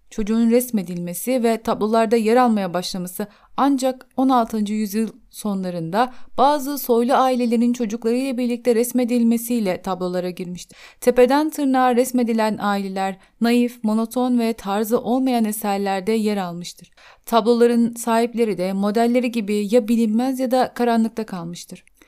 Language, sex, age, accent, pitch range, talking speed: Turkish, female, 30-49, native, 205-245 Hz, 115 wpm